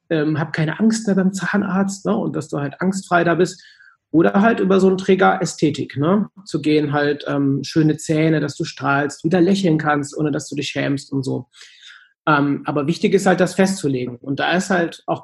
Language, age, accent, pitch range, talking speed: German, 30-49, German, 150-185 Hz, 215 wpm